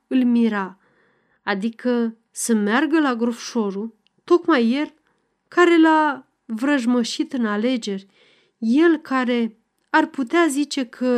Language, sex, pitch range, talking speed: Romanian, female, 210-265 Hz, 105 wpm